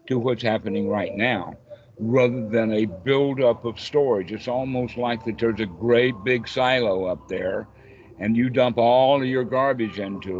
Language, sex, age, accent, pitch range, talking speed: English, male, 60-79, American, 100-120 Hz, 175 wpm